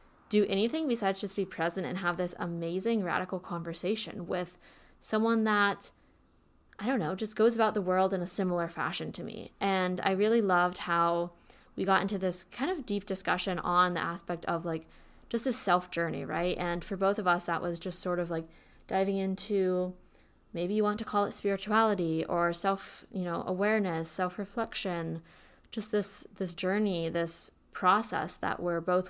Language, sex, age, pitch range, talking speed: English, female, 20-39, 175-210 Hz, 180 wpm